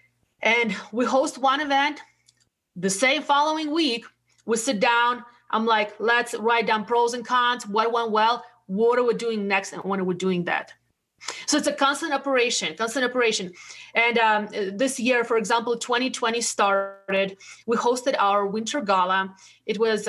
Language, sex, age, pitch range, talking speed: English, female, 30-49, 215-260 Hz, 165 wpm